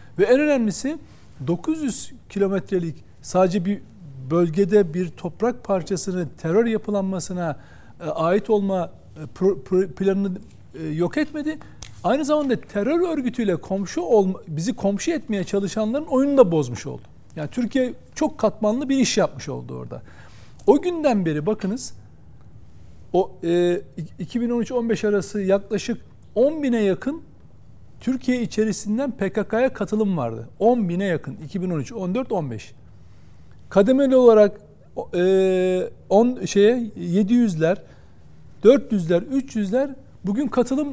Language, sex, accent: Turkish, male, native